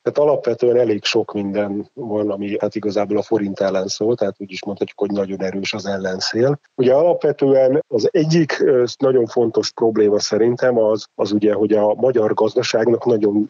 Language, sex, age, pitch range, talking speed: Hungarian, male, 30-49, 95-110 Hz, 170 wpm